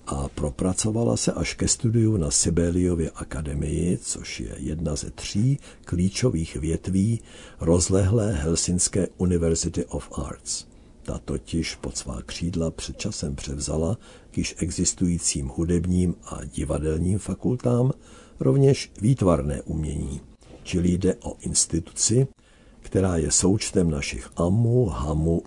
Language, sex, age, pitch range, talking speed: Czech, male, 60-79, 80-100 Hz, 115 wpm